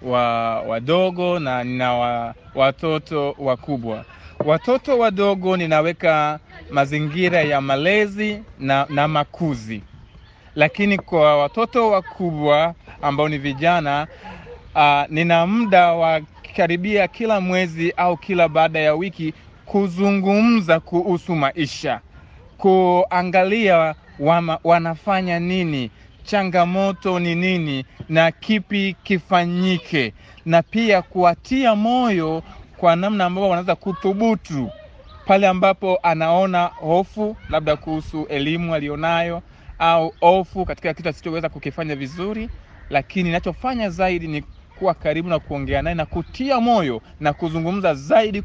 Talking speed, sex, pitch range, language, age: 110 wpm, male, 150-195 Hz, Swahili, 30-49